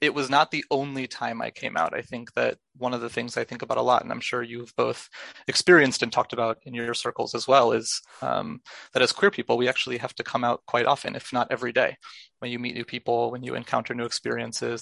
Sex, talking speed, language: male, 255 wpm, English